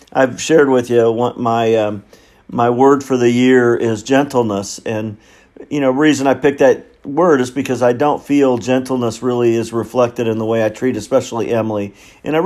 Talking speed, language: 195 wpm, English